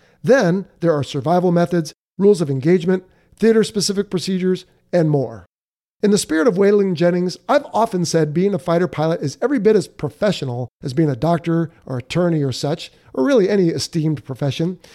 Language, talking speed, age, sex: English, 175 wpm, 50-69, male